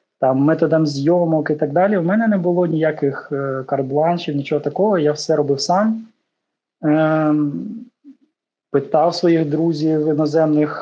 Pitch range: 140-175 Hz